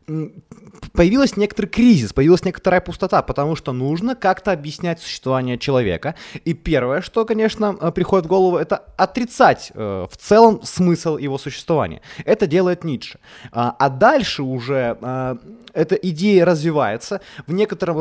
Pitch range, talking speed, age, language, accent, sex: 135-185 Hz, 135 wpm, 20-39, Ukrainian, native, male